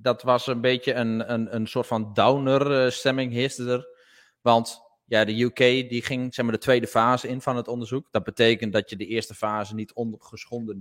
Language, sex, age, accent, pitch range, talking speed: Dutch, male, 20-39, Dutch, 105-125 Hz, 200 wpm